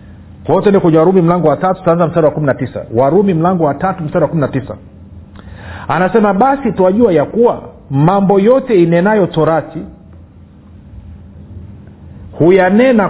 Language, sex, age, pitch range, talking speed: Swahili, male, 50-69, 120-190 Hz, 115 wpm